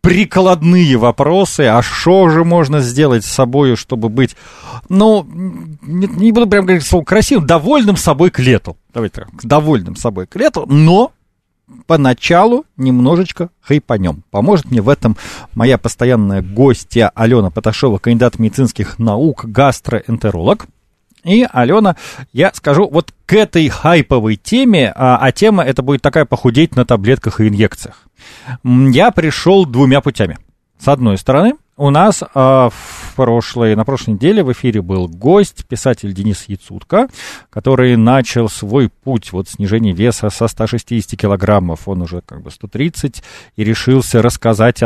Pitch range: 115-155 Hz